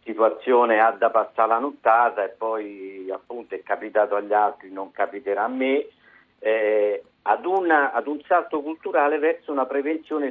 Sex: male